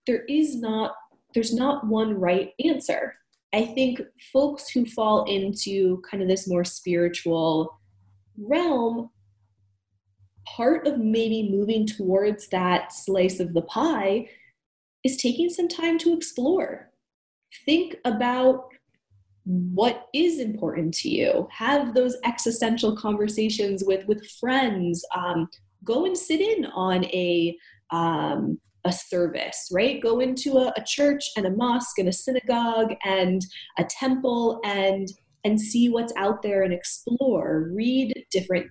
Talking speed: 130 wpm